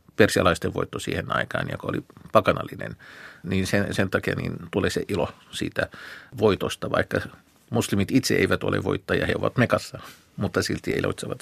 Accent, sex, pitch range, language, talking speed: native, male, 95-110 Hz, Finnish, 150 wpm